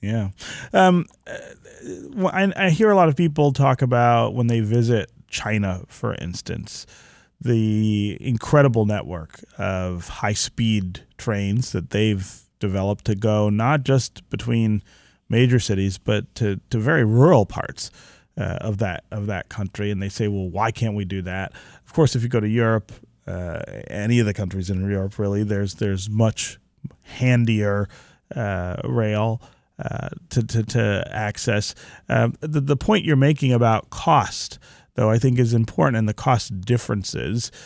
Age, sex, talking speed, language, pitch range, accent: 30-49, male, 155 wpm, English, 100-125 Hz, American